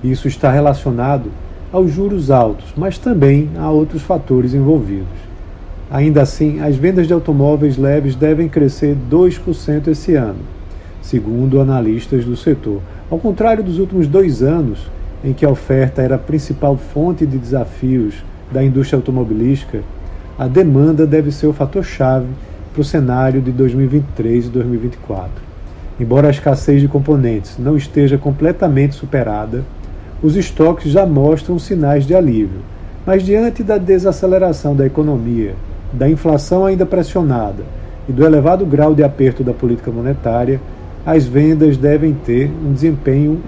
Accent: Brazilian